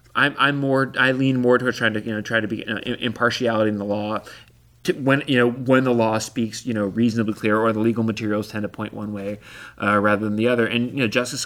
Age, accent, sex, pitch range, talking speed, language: 30-49, American, male, 110-125 Hz, 265 wpm, English